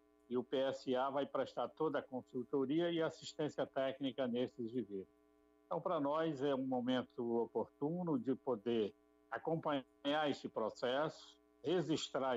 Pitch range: 115-145 Hz